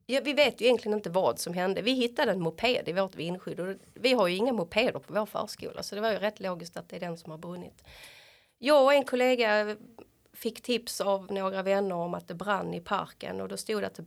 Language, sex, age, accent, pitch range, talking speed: Swedish, female, 30-49, native, 190-245 Hz, 250 wpm